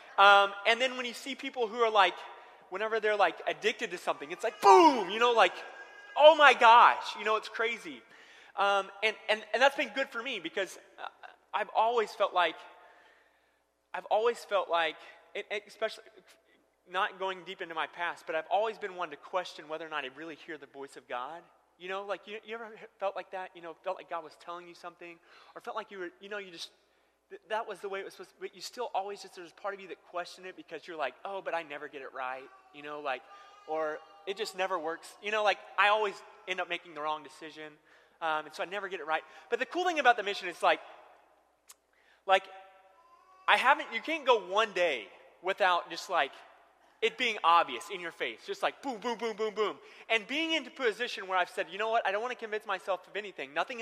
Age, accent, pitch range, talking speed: 20-39, American, 175-230 Hz, 235 wpm